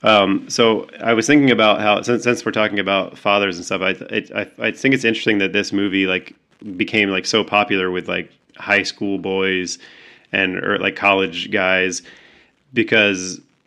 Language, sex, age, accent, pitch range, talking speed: English, male, 30-49, American, 95-110 Hz, 185 wpm